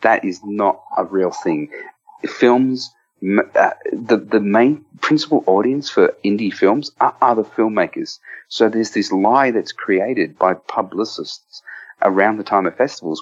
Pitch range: 100-145 Hz